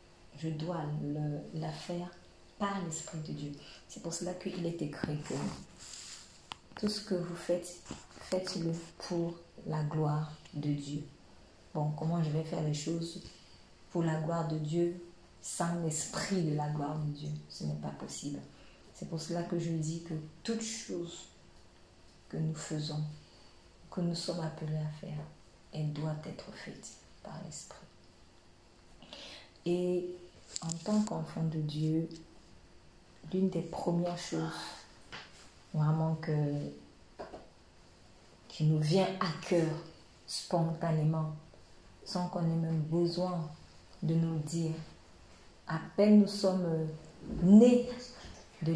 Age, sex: 40-59, female